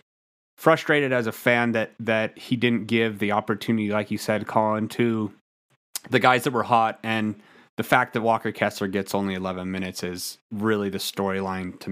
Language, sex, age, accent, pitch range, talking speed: English, male, 30-49, American, 110-130 Hz, 180 wpm